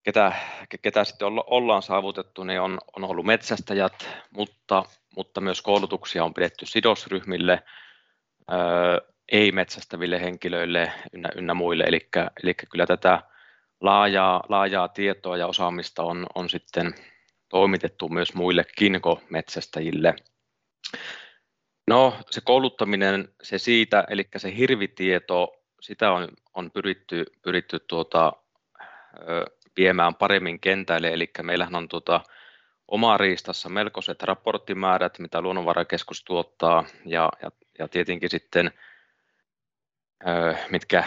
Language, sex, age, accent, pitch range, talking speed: Finnish, male, 30-49, native, 90-100 Hz, 105 wpm